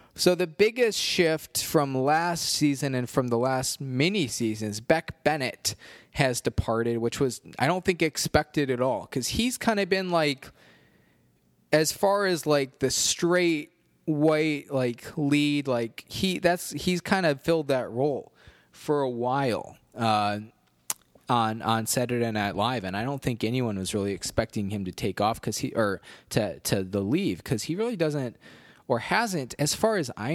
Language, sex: English, male